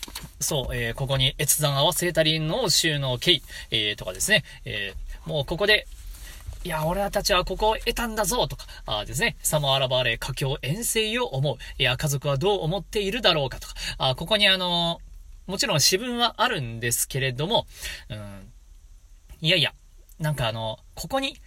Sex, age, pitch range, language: male, 40-59, 125-205 Hz, Japanese